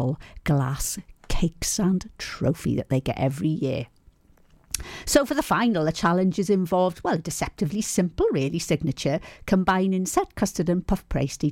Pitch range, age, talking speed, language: 145-195 Hz, 50-69, 140 wpm, English